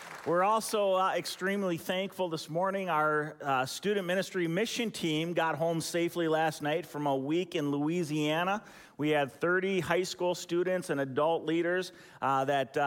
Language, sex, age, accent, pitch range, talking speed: English, male, 40-59, American, 130-170 Hz, 160 wpm